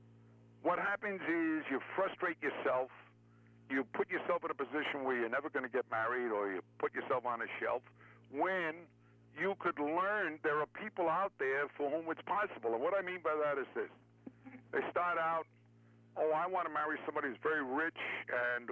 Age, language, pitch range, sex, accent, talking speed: 60-79, English, 120-170 Hz, male, American, 190 wpm